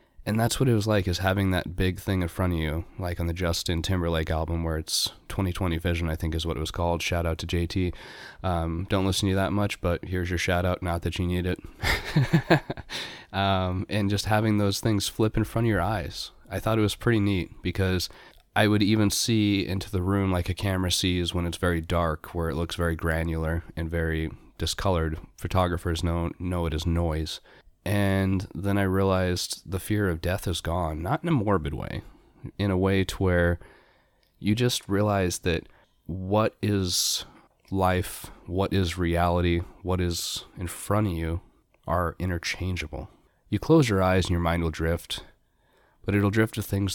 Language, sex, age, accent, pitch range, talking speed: English, male, 20-39, American, 85-100 Hz, 195 wpm